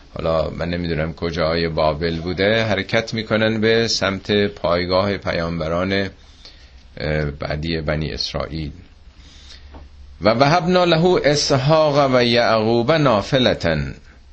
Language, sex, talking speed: Persian, male, 90 wpm